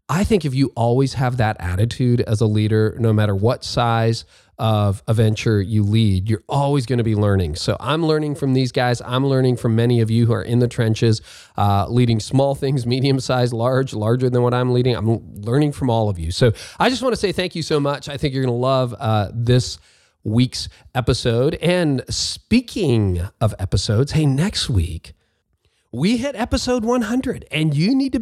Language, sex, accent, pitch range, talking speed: English, male, American, 110-150 Hz, 205 wpm